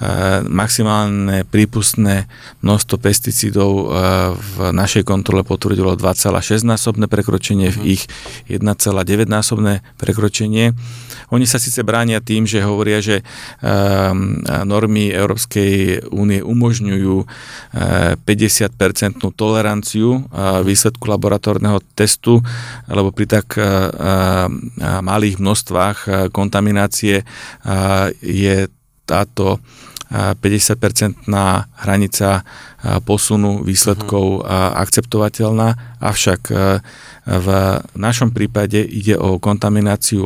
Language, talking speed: Slovak, 80 wpm